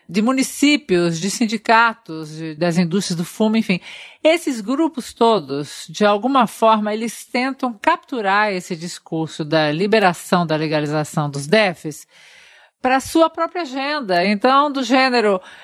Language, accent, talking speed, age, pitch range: Portuguese, Brazilian, 130 wpm, 50-69, 205-280 Hz